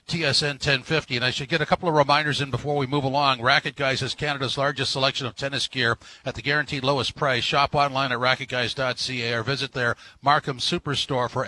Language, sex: English, male